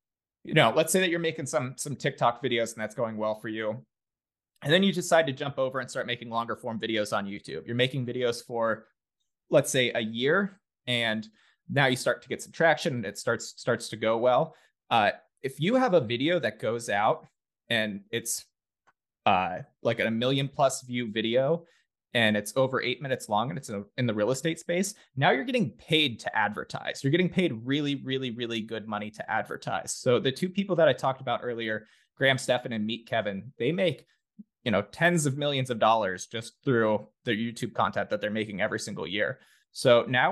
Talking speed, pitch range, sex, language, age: 205 wpm, 115-145 Hz, male, English, 20-39